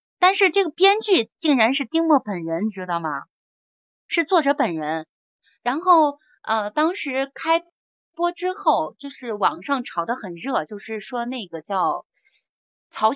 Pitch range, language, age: 210-320 Hz, Chinese, 20-39